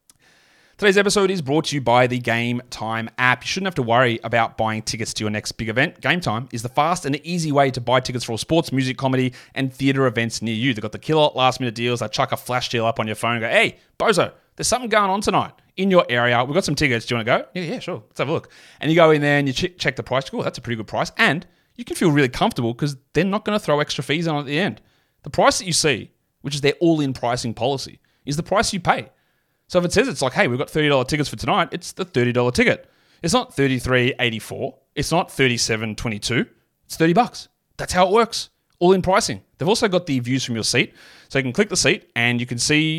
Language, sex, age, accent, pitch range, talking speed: English, male, 30-49, Australian, 125-165 Hz, 265 wpm